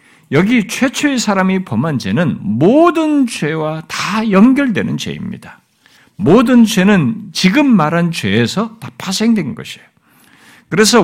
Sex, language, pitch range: male, Korean, 140-225 Hz